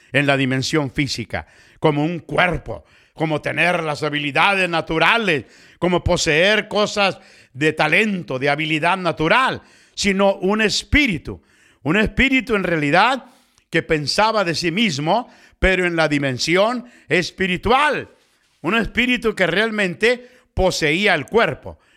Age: 50-69